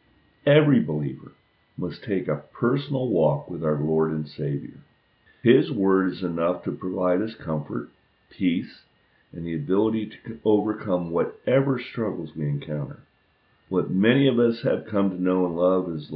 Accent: American